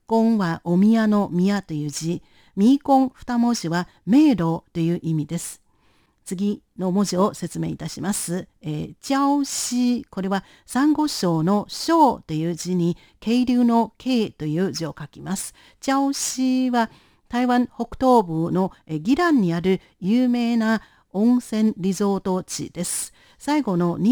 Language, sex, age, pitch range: Japanese, female, 50-69, 175-250 Hz